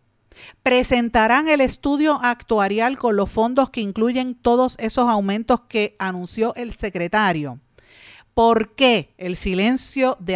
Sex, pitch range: female, 185-245 Hz